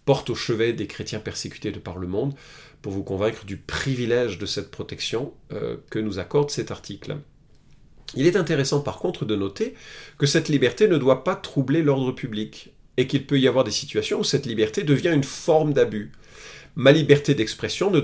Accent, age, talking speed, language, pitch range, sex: French, 40-59, 195 wpm, French, 110-145 Hz, male